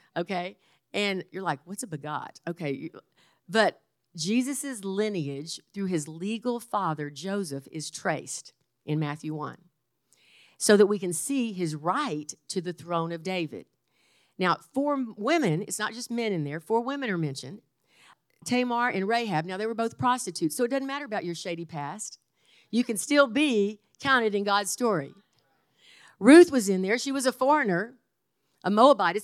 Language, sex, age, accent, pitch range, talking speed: English, female, 50-69, American, 175-245 Hz, 165 wpm